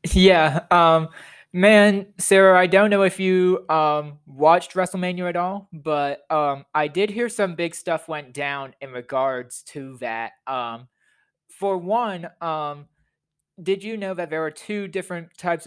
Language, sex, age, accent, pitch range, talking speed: English, male, 20-39, American, 135-170 Hz, 155 wpm